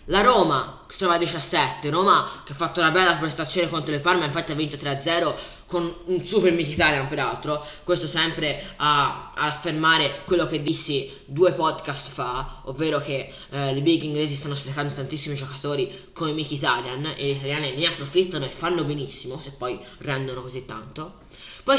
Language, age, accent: Italian, 10-29, native